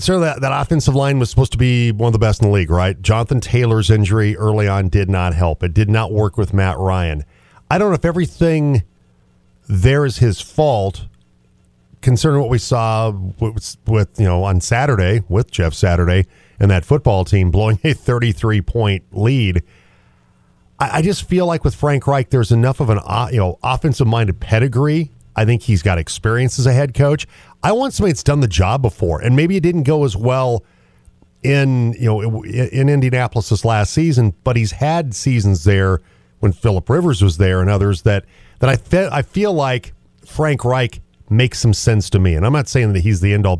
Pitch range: 95-135 Hz